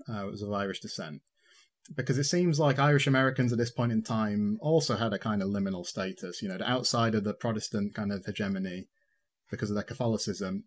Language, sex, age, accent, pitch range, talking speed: English, male, 20-39, British, 105-135 Hz, 215 wpm